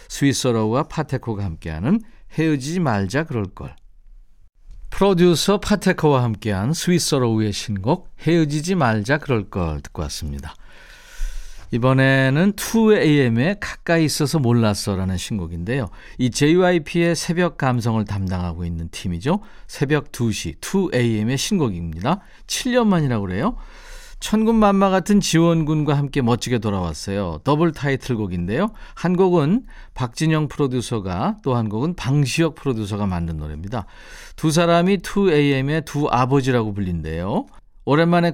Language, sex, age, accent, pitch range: Korean, male, 50-69, native, 110-170 Hz